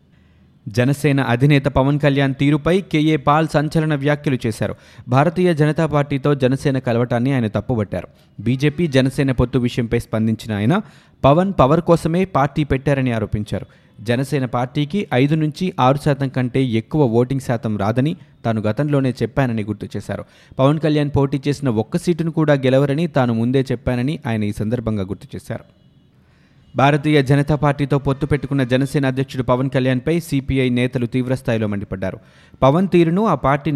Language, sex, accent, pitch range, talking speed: Telugu, male, native, 120-150 Hz, 140 wpm